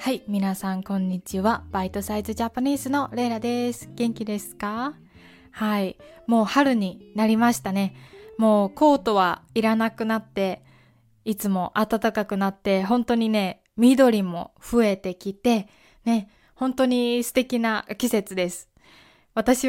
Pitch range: 195-245 Hz